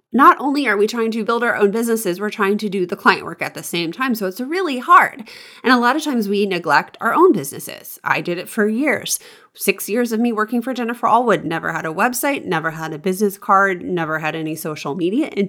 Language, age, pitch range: English, 20-39, 180-255 Hz